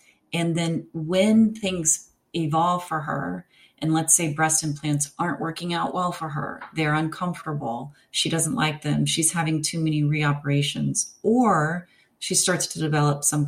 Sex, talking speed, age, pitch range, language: female, 155 wpm, 30-49, 145-180 Hz, English